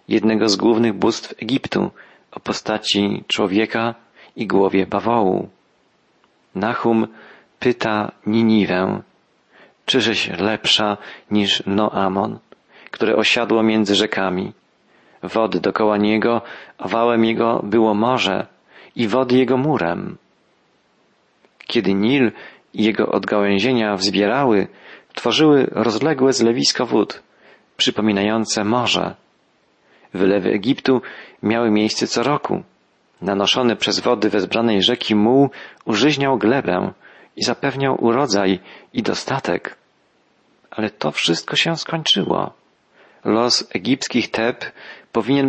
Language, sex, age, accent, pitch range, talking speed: Polish, male, 40-59, native, 100-120 Hz, 100 wpm